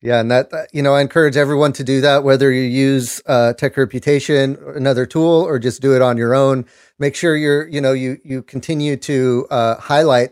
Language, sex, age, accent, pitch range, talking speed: English, male, 30-49, American, 115-135 Hz, 215 wpm